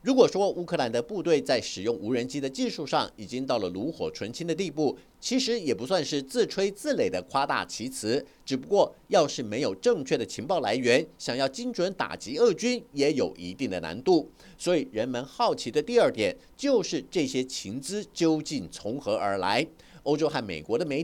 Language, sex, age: Chinese, male, 50-69